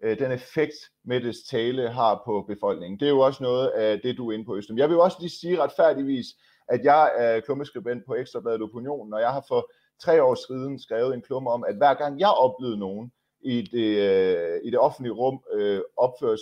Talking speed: 210 wpm